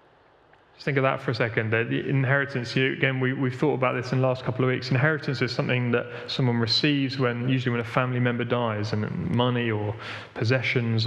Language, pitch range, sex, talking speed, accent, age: English, 120-145 Hz, male, 205 wpm, British, 30-49